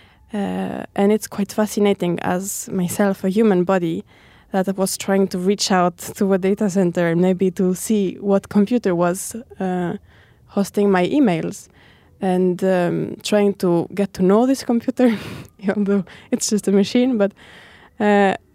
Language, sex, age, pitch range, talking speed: English, female, 20-39, 185-210 Hz, 155 wpm